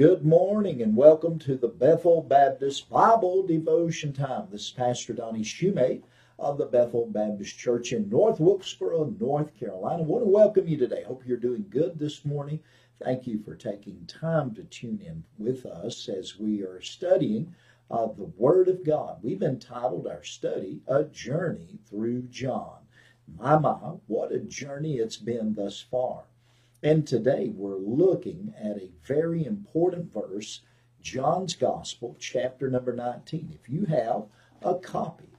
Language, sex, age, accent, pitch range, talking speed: English, male, 50-69, American, 120-165 Hz, 160 wpm